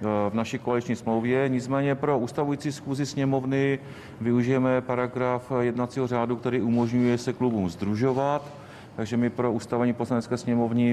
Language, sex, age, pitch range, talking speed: Czech, male, 40-59, 115-130 Hz, 130 wpm